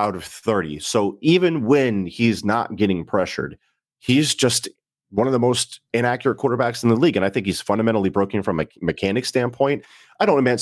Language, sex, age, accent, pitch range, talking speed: English, male, 30-49, American, 100-125 Hz, 185 wpm